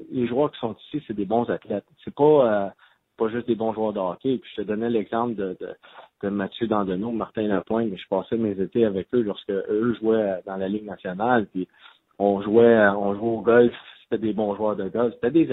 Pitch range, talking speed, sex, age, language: 105-125 Hz, 230 wpm, male, 30-49, French